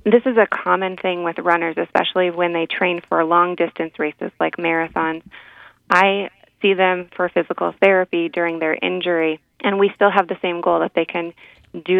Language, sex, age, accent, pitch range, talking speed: English, female, 20-39, American, 165-190 Hz, 180 wpm